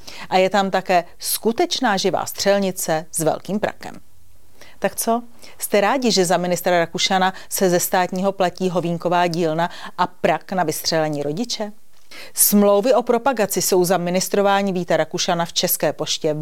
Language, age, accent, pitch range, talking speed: Czech, 40-59, native, 175-210 Hz, 145 wpm